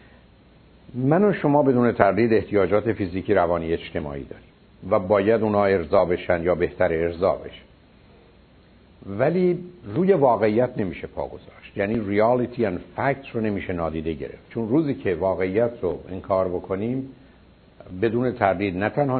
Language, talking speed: Persian, 135 wpm